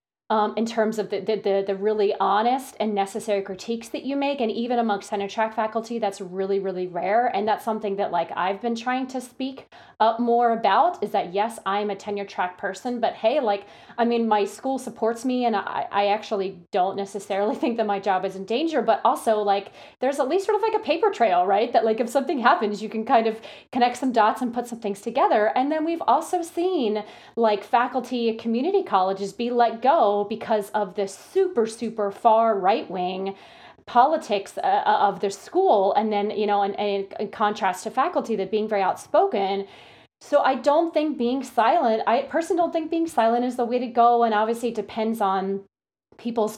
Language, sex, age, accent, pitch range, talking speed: English, female, 30-49, American, 200-240 Hz, 205 wpm